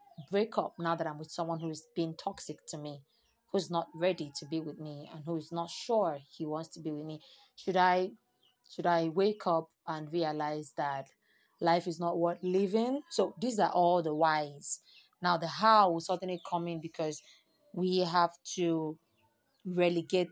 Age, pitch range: 30-49, 155-195 Hz